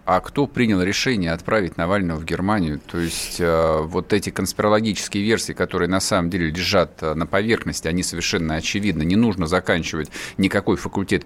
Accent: native